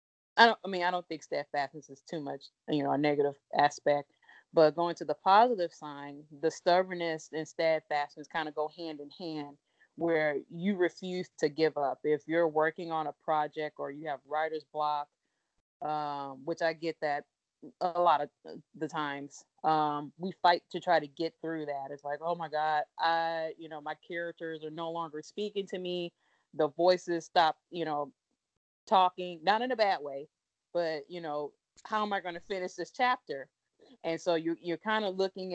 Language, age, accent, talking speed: English, 30-49, American, 190 wpm